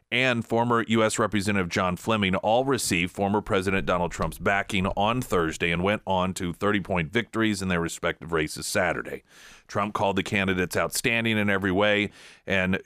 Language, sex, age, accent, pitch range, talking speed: English, male, 40-59, American, 85-110 Hz, 165 wpm